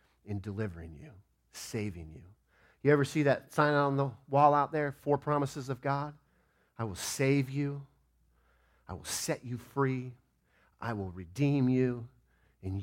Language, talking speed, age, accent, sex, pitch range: English, 155 wpm, 40-59, American, male, 90-150 Hz